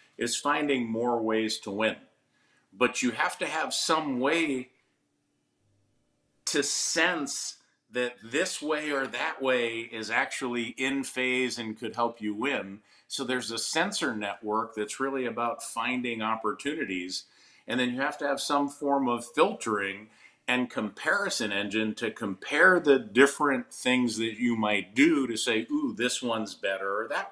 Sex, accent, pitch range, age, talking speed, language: male, American, 105-130 Hz, 50-69, 155 wpm, English